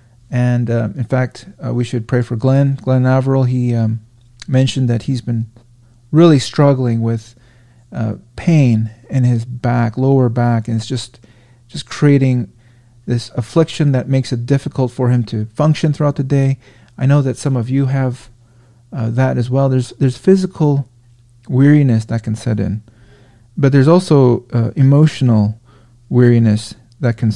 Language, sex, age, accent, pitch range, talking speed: English, male, 40-59, American, 120-135 Hz, 160 wpm